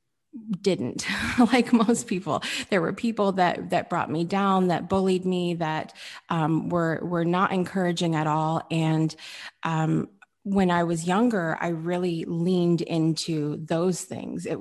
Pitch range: 160-195 Hz